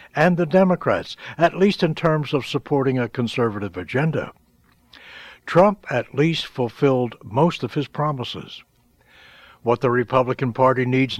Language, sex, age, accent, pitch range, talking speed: English, male, 60-79, American, 120-155 Hz, 135 wpm